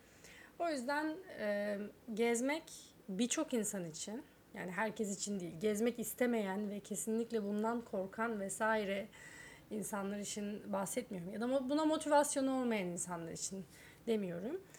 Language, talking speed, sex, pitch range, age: Turkish, 115 wpm, female, 195-255 Hz, 30-49